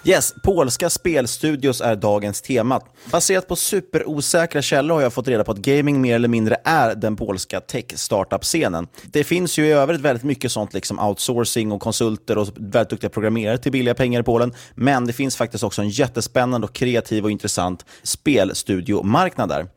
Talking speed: 175 wpm